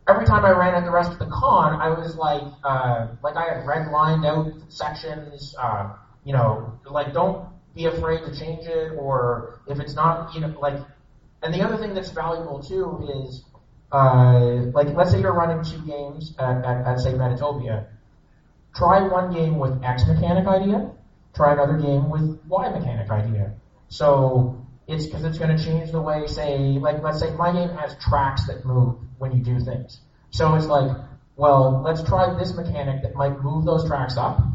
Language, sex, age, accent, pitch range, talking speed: English, male, 30-49, American, 130-160 Hz, 190 wpm